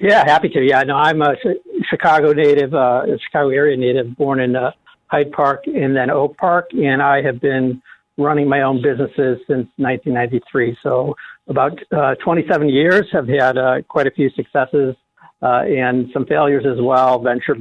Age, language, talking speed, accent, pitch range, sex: 60-79, English, 175 wpm, American, 120-140 Hz, male